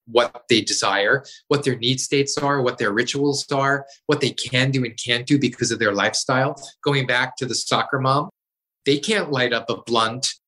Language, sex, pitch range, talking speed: English, male, 120-145 Hz, 200 wpm